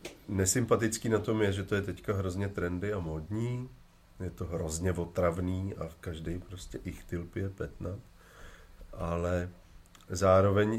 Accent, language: native, Czech